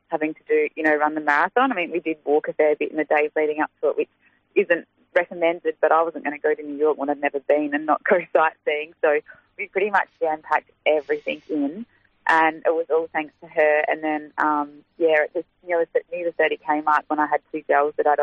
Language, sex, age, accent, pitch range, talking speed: English, female, 20-39, Australian, 145-170 Hz, 245 wpm